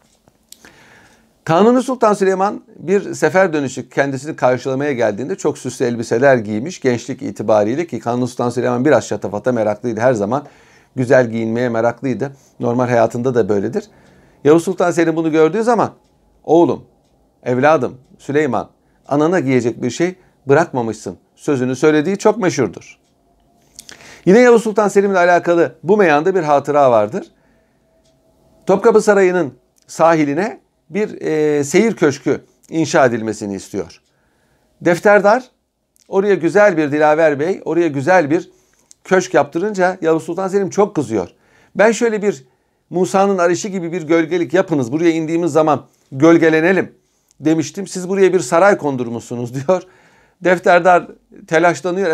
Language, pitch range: Turkish, 130-185 Hz